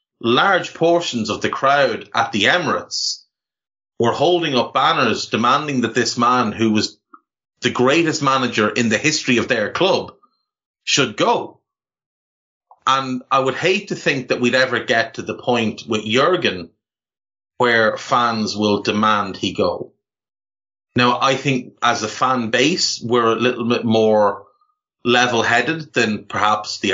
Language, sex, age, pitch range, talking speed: English, male, 30-49, 110-140 Hz, 150 wpm